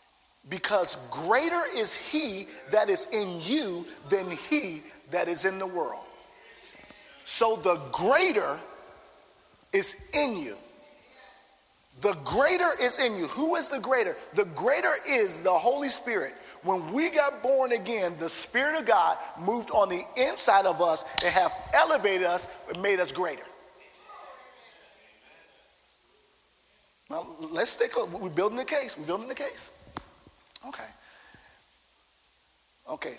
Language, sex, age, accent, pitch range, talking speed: English, male, 40-59, American, 185-290 Hz, 135 wpm